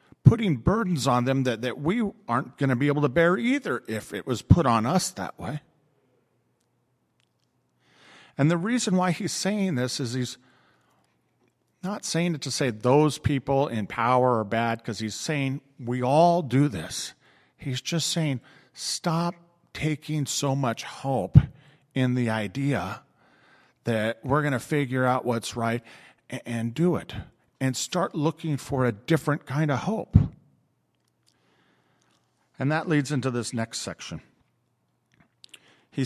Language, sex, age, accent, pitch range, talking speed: English, male, 40-59, American, 115-150 Hz, 150 wpm